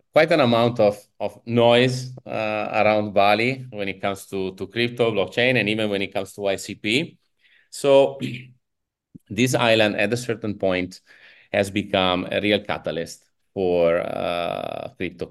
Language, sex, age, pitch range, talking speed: English, male, 30-49, 95-115 Hz, 150 wpm